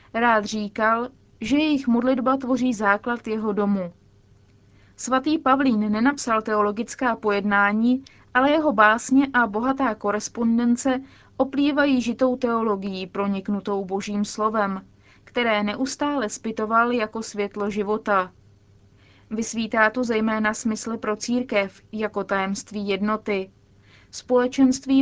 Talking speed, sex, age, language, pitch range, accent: 100 wpm, female, 20-39, Czech, 200-240 Hz, native